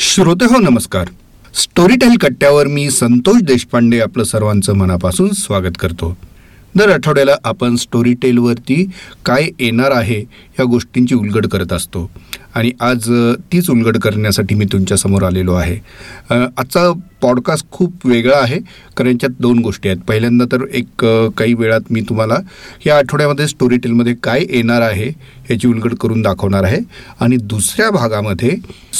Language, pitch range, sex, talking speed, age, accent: Marathi, 115-160 Hz, male, 120 wpm, 40-59, native